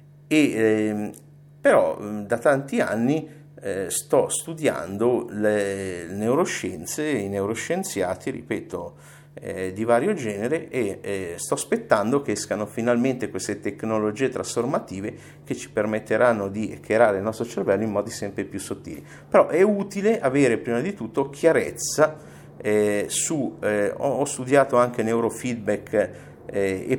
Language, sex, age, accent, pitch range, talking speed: Italian, male, 50-69, native, 95-130 Hz, 125 wpm